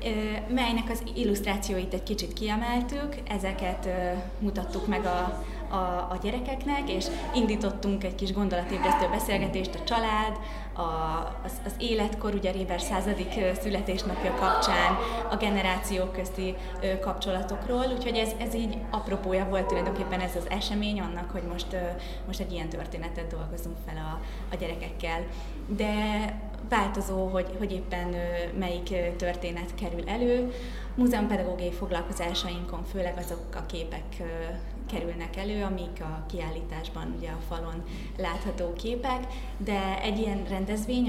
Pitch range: 175-210 Hz